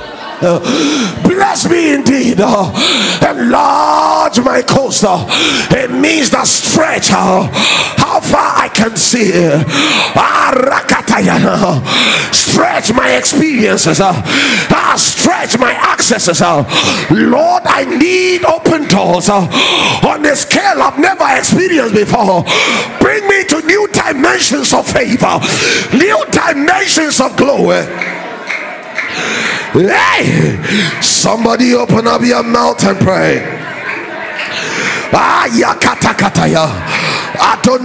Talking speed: 85 wpm